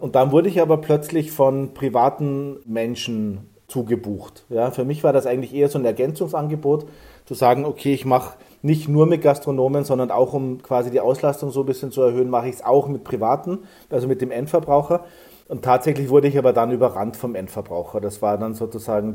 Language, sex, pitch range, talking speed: German, male, 120-145 Hz, 195 wpm